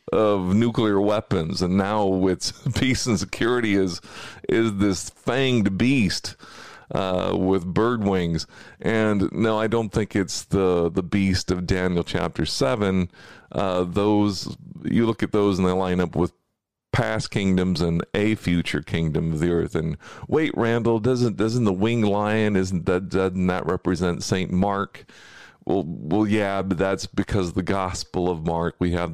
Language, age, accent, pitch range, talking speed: English, 40-59, American, 85-105 Hz, 160 wpm